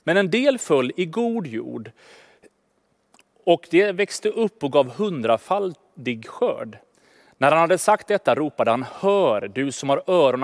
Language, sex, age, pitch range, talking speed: Swedish, male, 30-49, 150-200 Hz, 155 wpm